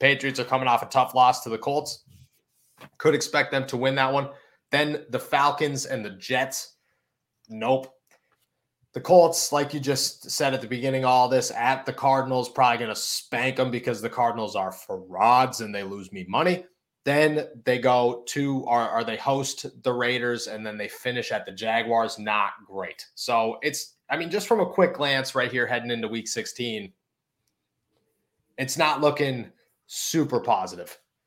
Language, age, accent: English, 30-49, American